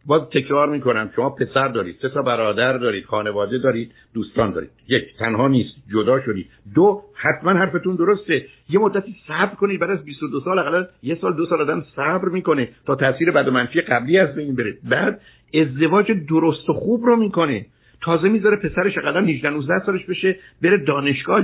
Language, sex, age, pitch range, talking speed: Persian, male, 60-79, 130-175 Hz, 180 wpm